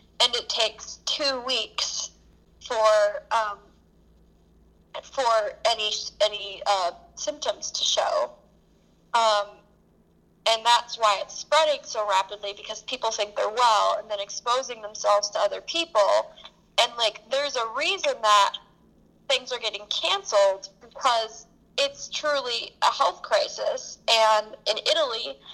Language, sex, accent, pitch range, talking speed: English, female, American, 215-285 Hz, 125 wpm